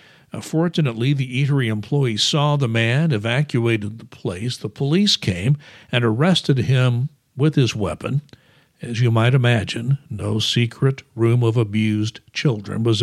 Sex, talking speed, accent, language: male, 140 wpm, American, English